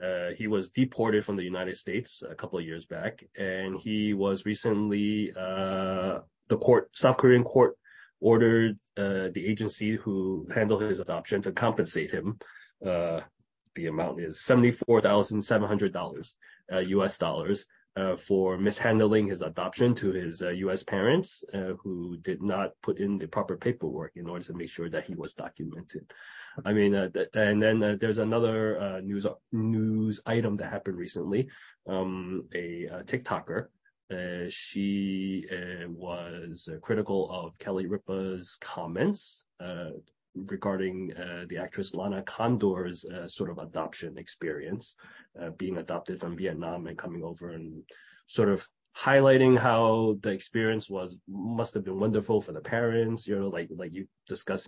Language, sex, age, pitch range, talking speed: English, male, 30-49, 95-110 Hz, 160 wpm